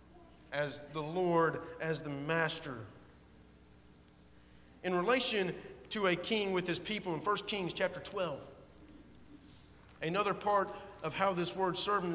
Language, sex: English, male